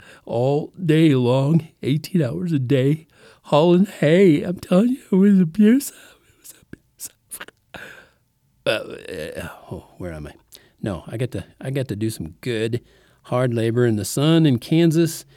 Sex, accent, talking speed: male, American, 160 wpm